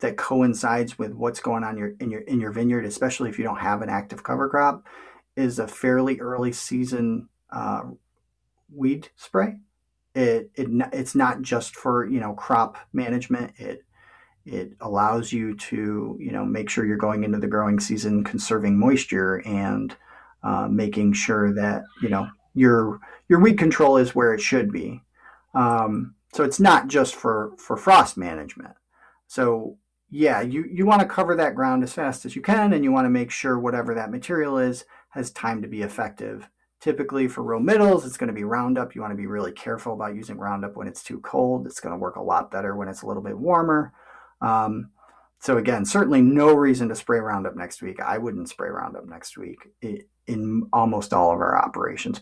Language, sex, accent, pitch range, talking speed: English, male, American, 105-135 Hz, 185 wpm